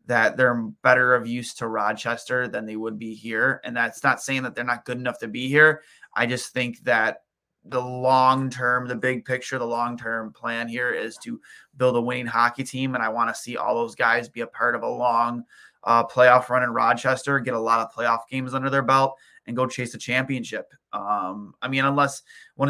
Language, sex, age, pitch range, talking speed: English, male, 20-39, 120-130 Hz, 215 wpm